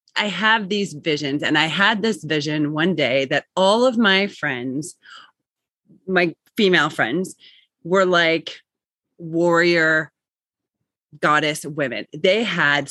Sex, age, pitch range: female, 30-49, 150-195 Hz